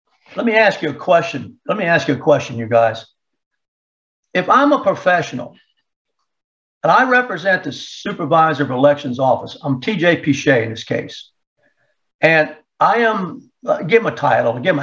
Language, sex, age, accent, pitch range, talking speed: English, male, 60-79, American, 135-190 Hz, 170 wpm